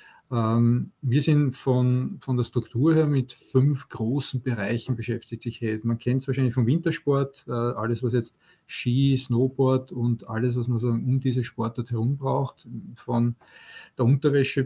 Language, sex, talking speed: German, male, 160 wpm